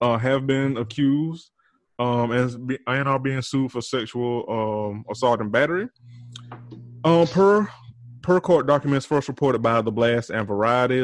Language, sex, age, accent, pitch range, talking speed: English, male, 20-39, American, 115-140 Hz, 145 wpm